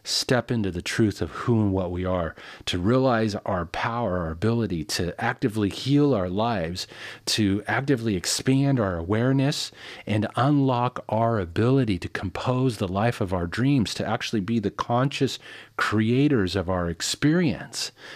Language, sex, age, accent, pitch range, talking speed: English, male, 40-59, American, 95-120 Hz, 150 wpm